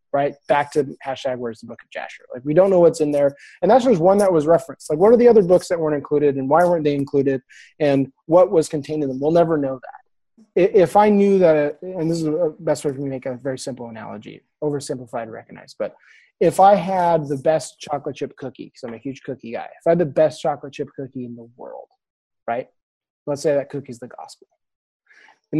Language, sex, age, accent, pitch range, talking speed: English, male, 30-49, American, 135-180 Hz, 235 wpm